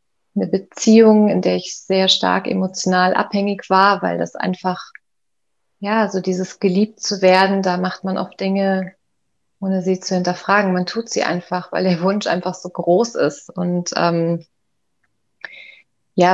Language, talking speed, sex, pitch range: German, 155 wpm, female, 180-200 Hz